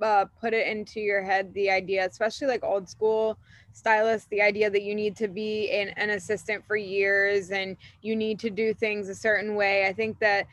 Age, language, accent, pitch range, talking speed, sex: 20-39, English, American, 190-220 Hz, 210 wpm, female